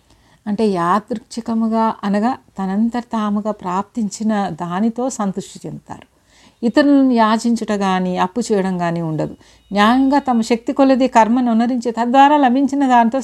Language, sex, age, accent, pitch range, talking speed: Telugu, female, 60-79, native, 180-230 Hz, 110 wpm